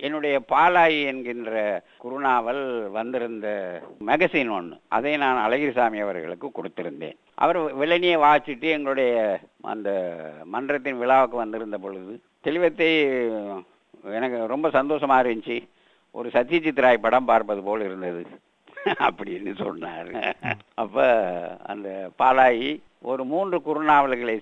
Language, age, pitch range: Tamil, 60-79, 115-165 Hz